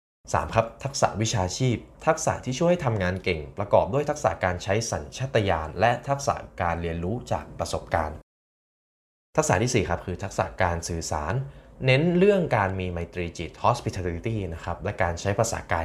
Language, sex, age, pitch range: Thai, male, 20-39, 85-115 Hz